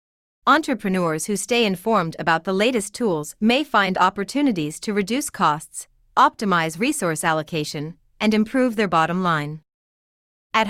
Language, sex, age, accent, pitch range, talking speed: English, female, 30-49, American, 170-230 Hz, 130 wpm